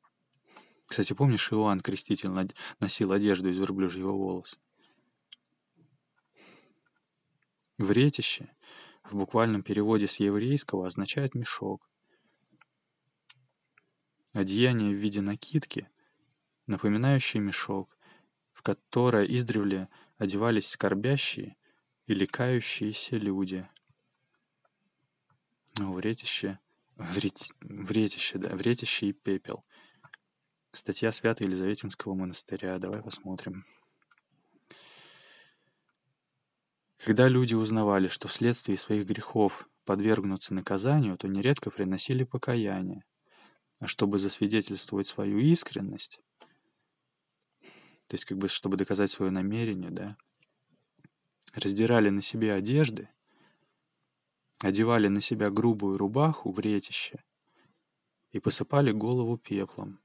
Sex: male